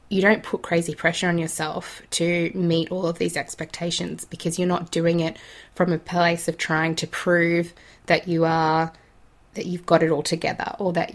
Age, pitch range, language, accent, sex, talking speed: 20-39, 170-190 Hz, English, Australian, female, 195 wpm